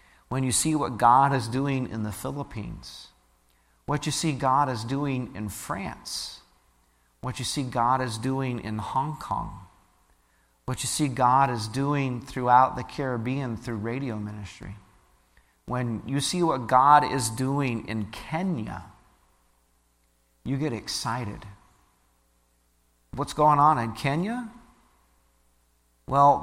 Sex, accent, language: male, American, English